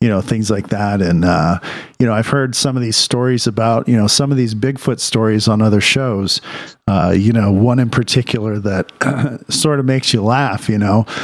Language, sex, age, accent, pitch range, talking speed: English, male, 50-69, American, 105-130 Hz, 215 wpm